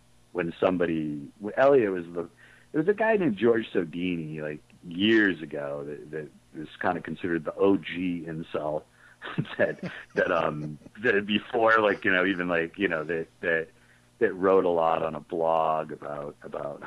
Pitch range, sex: 75-90 Hz, male